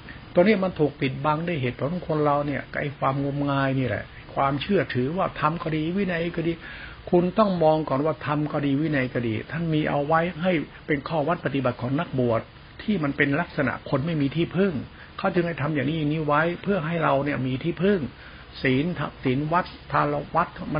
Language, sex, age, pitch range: Thai, male, 60-79, 130-160 Hz